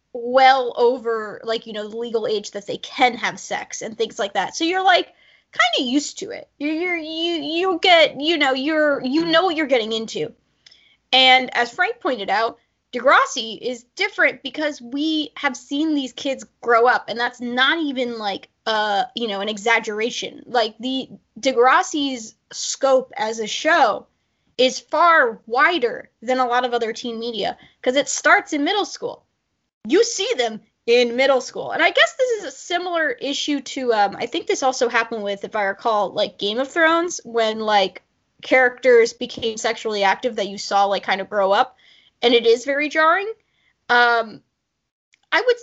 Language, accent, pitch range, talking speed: English, American, 230-300 Hz, 185 wpm